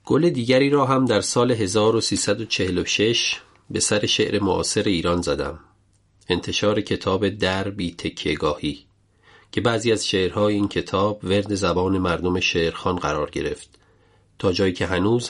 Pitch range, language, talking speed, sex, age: 90-105 Hz, Persian, 130 wpm, male, 40-59